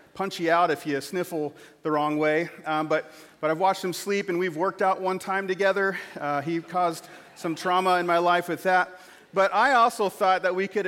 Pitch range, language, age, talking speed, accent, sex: 170-205 Hz, English, 40-59, 220 wpm, American, male